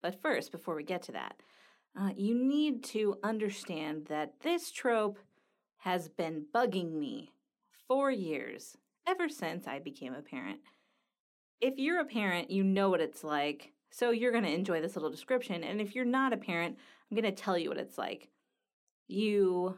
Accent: American